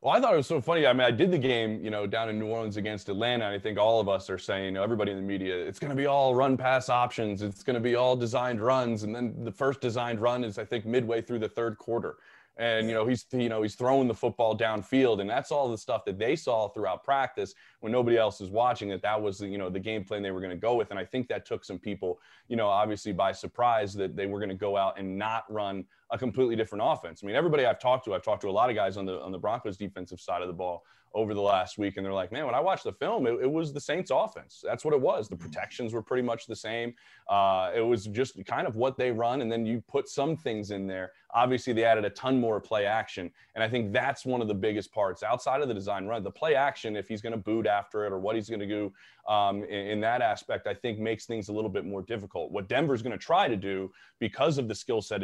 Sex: male